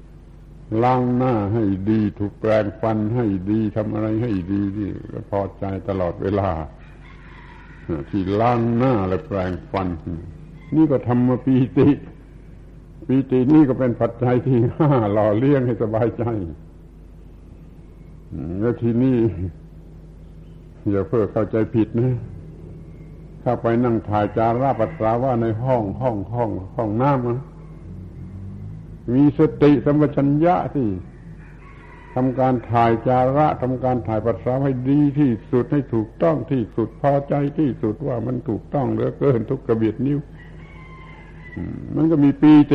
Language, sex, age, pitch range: Thai, male, 70-89, 105-130 Hz